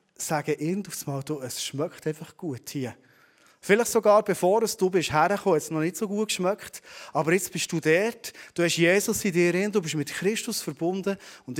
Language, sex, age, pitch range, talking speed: German, male, 30-49, 145-200 Hz, 180 wpm